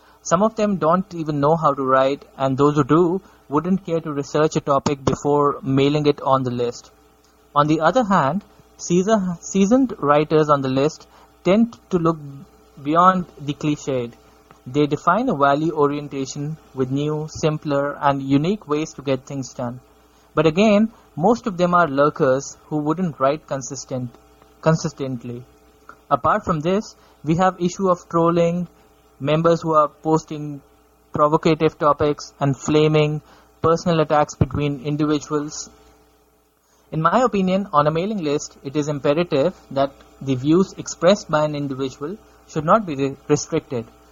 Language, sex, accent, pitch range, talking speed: English, male, Indian, 140-165 Hz, 145 wpm